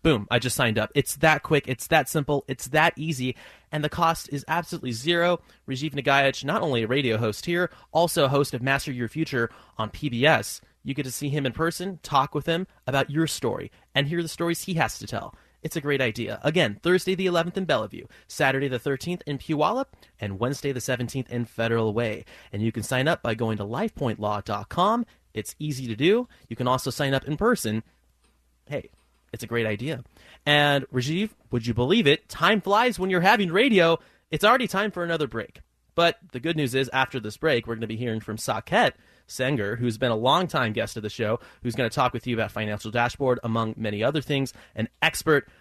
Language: English